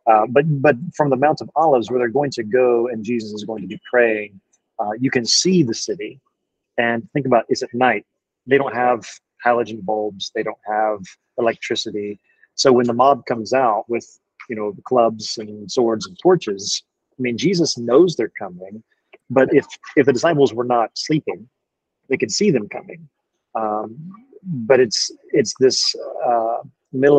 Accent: American